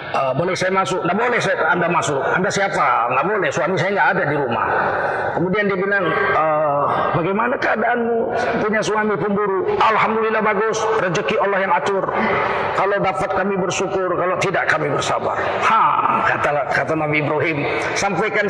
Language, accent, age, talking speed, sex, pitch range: Indonesian, native, 40-59, 155 wpm, male, 160-215 Hz